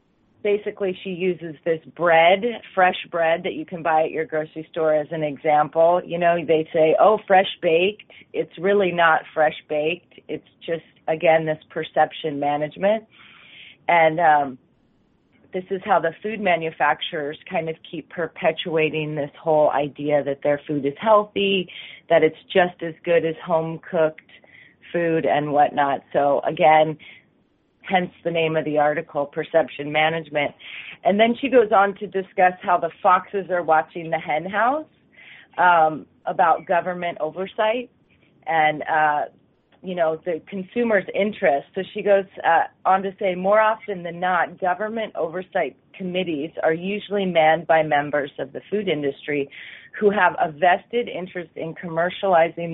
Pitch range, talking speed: 155-190 Hz, 150 wpm